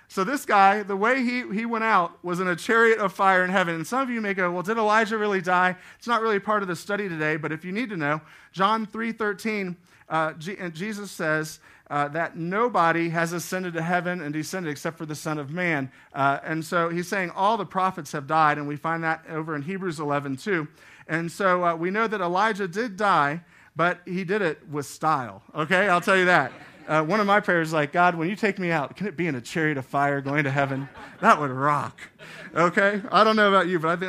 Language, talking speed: English, 240 wpm